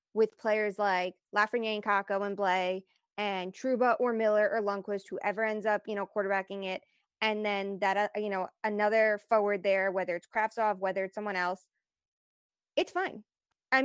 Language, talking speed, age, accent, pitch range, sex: English, 175 wpm, 20-39, American, 195-230 Hz, female